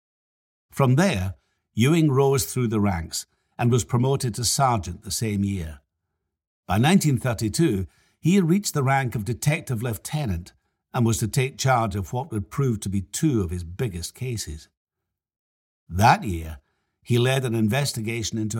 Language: English